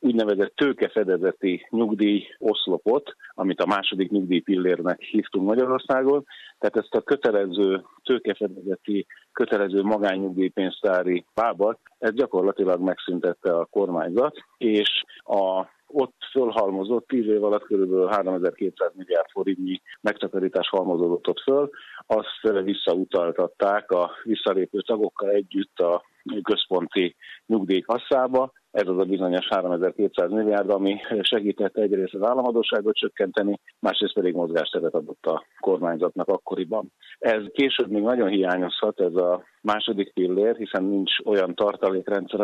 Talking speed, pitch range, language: 115 wpm, 95-115 Hz, Hungarian